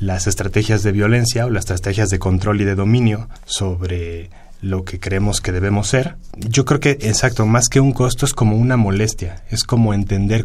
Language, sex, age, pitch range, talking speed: Spanish, male, 30-49, 95-115 Hz, 195 wpm